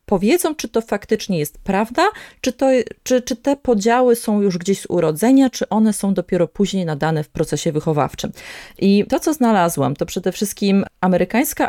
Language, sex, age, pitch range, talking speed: Polish, female, 20-39, 170-235 Hz, 170 wpm